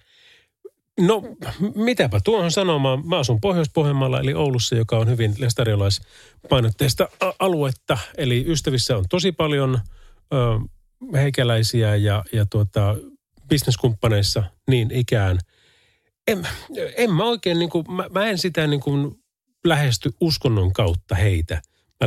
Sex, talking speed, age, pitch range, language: male, 120 wpm, 30-49, 105-155 Hz, Finnish